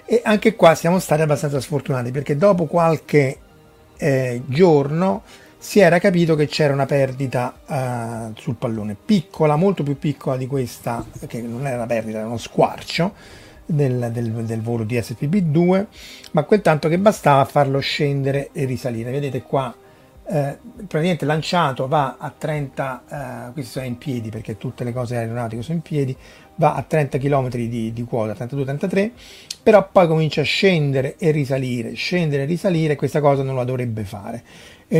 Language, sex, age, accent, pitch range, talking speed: Italian, male, 30-49, native, 125-160 Hz, 170 wpm